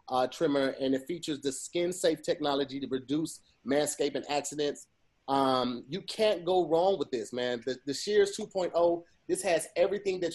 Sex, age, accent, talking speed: male, 30-49, American, 170 wpm